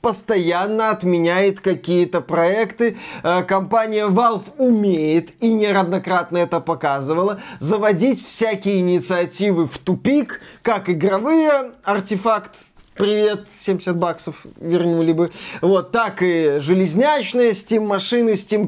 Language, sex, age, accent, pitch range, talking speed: Russian, male, 20-39, native, 175-220 Hz, 100 wpm